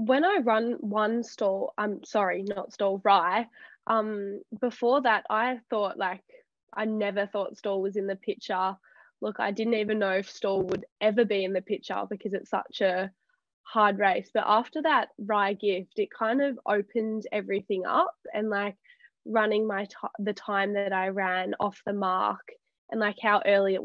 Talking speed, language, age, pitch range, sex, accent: 185 wpm, English, 10-29, 195-225 Hz, female, Australian